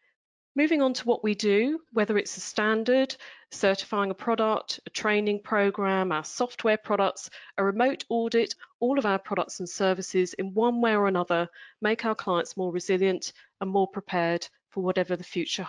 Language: English